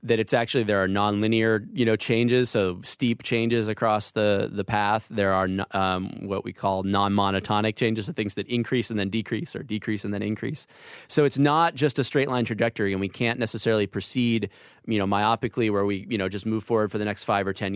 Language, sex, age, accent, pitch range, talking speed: English, male, 30-49, American, 100-120 Hz, 225 wpm